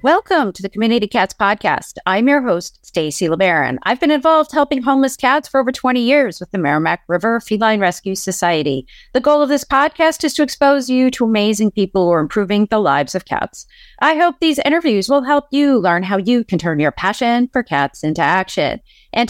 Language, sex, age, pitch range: English, female, 30-49, 195-270 Hz